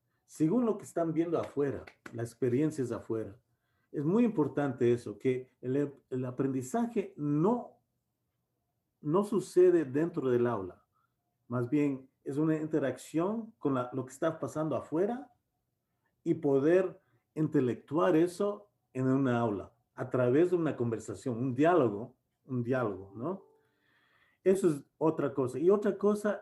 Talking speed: 135 wpm